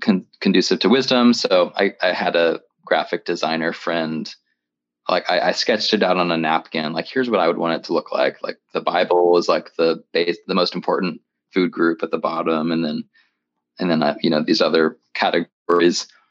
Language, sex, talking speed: English, male, 200 wpm